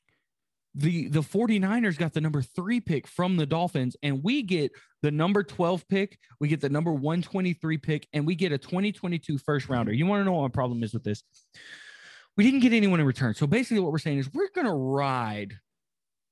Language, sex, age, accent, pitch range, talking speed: English, male, 20-39, American, 135-195 Hz, 205 wpm